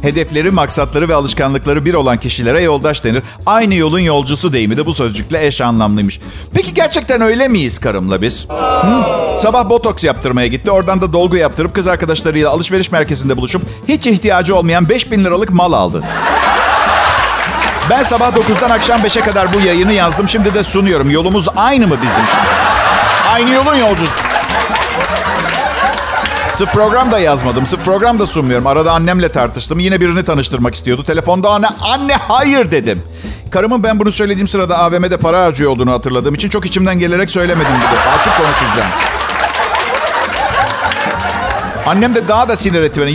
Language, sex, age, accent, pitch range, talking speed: Turkish, male, 50-69, native, 145-205 Hz, 155 wpm